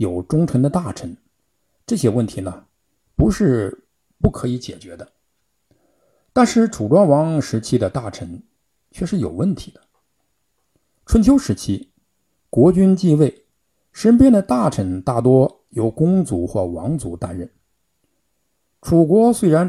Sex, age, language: male, 60-79, Chinese